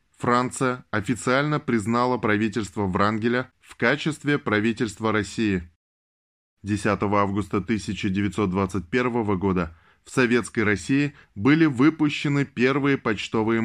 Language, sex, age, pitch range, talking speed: Russian, male, 20-39, 100-125 Hz, 90 wpm